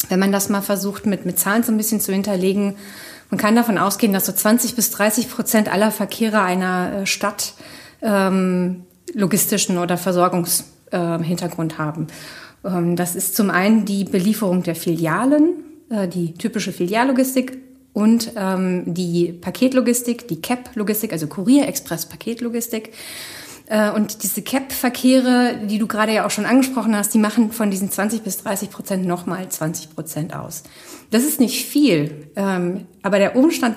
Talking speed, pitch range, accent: 150 wpm, 185-230 Hz, German